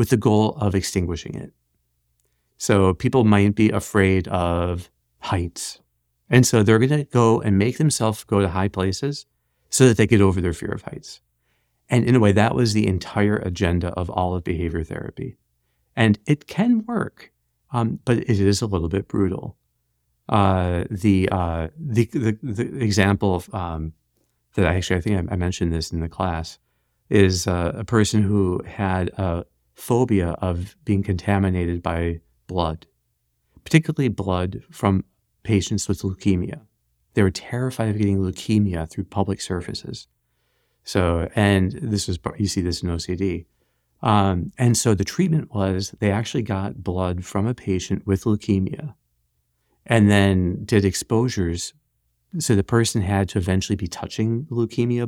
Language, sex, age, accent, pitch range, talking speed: English, male, 40-59, American, 85-110 Hz, 160 wpm